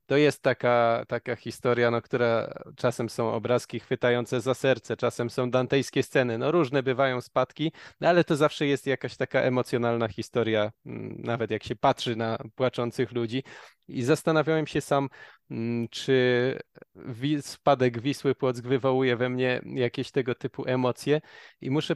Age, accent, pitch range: 20-39, native, 125-150 Hz